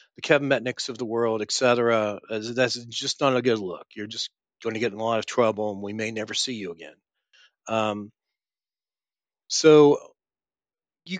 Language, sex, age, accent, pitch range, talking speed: English, male, 40-59, American, 110-125 Hz, 175 wpm